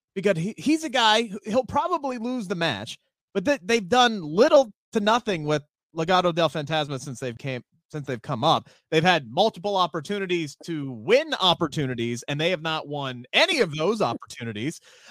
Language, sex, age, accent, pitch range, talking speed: English, male, 30-49, American, 190-300 Hz, 180 wpm